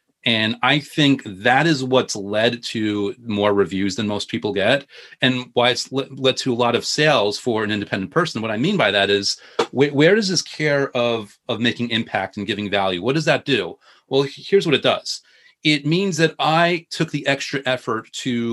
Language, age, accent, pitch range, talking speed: English, 30-49, American, 120-150 Hz, 200 wpm